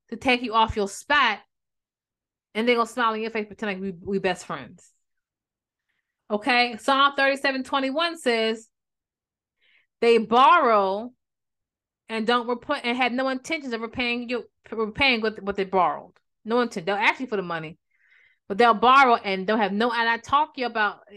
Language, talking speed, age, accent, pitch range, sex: English, 170 wpm, 30-49, American, 200-245 Hz, female